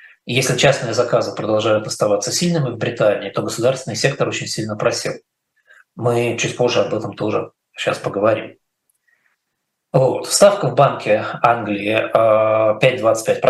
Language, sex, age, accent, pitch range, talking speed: Russian, male, 20-39, native, 120-165 Hz, 125 wpm